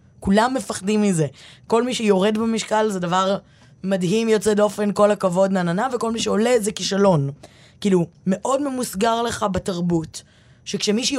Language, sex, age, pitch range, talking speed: Hebrew, female, 20-39, 175-235 Hz, 150 wpm